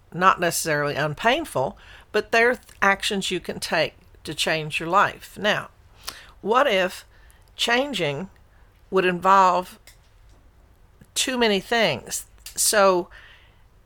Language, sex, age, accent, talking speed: English, female, 50-69, American, 100 wpm